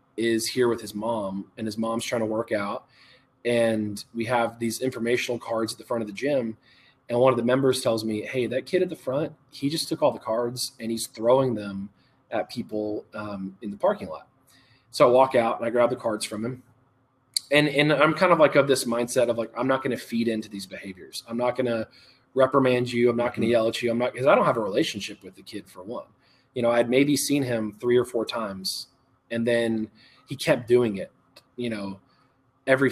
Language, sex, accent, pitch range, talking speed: English, male, American, 115-130 Hz, 235 wpm